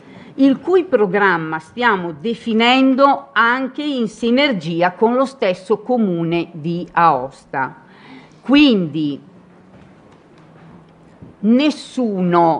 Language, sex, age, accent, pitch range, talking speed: Italian, female, 50-69, native, 170-230 Hz, 75 wpm